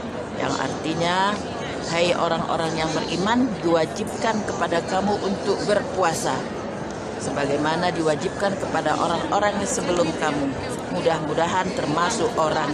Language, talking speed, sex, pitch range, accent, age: Indonesian, 95 wpm, female, 170-225 Hz, native, 40-59